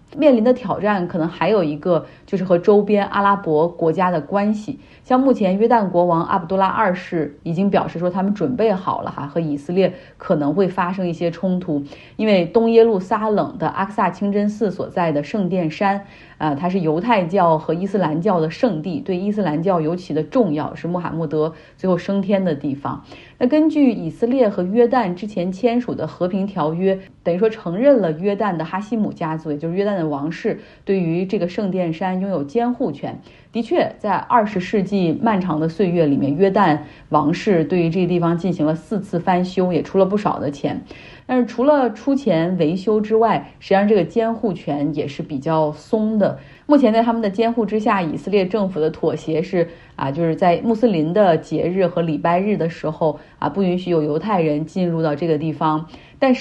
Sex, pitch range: female, 160-210 Hz